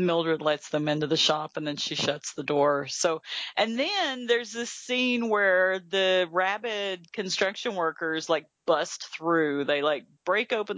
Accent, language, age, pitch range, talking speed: American, English, 40-59, 155-195 Hz, 165 wpm